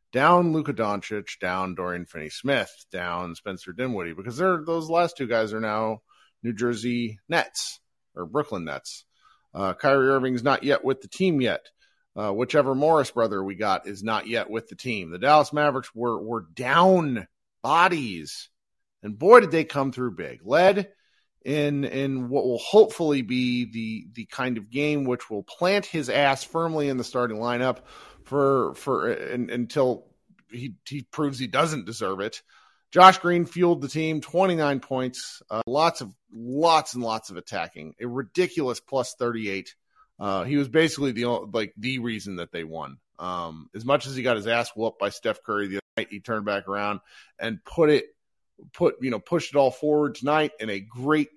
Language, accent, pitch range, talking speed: English, American, 110-150 Hz, 180 wpm